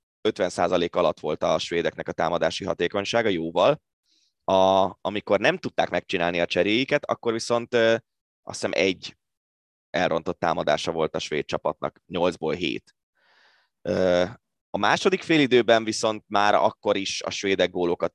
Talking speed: 135 wpm